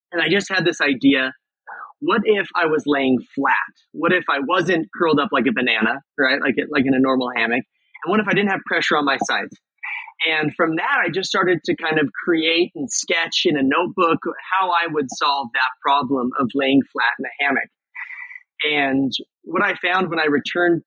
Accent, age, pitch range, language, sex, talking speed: American, 30-49, 140-210 Hz, English, male, 210 wpm